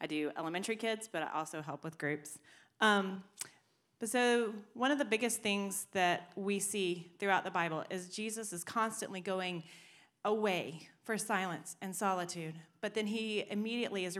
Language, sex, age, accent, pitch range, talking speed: English, female, 30-49, American, 160-200 Hz, 165 wpm